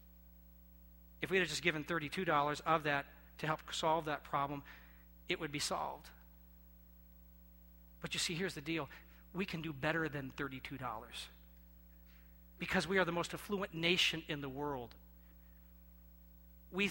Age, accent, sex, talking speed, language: 40-59, American, male, 140 wpm, English